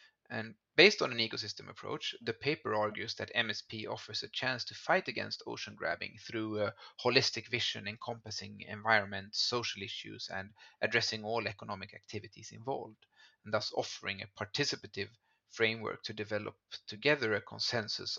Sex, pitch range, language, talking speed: male, 105-120 Hz, English, 145 wpm